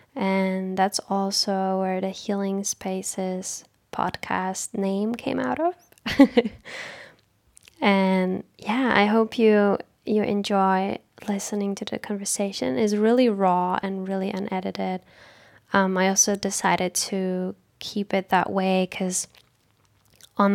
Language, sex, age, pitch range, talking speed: English, female, 10-29, 190-210 Hz, 115 wpm